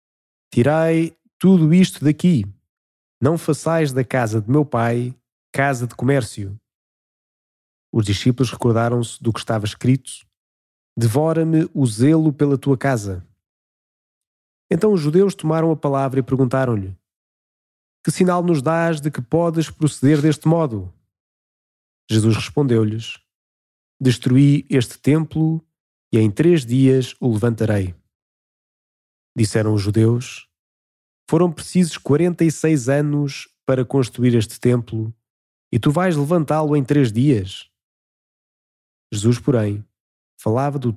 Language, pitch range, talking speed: Portuguese, 110-150 Hz, 115 wpm